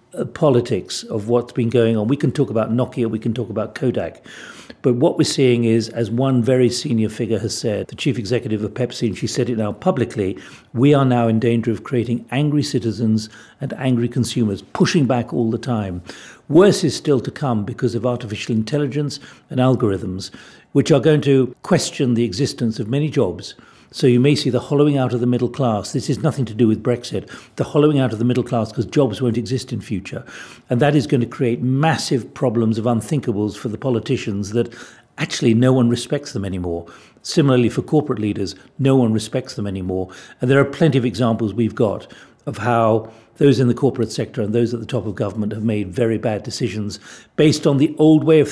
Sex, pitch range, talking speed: male, 110-135 Hz, 210 wpm